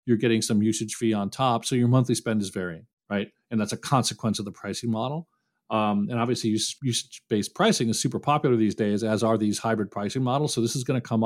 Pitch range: 115-150 Hz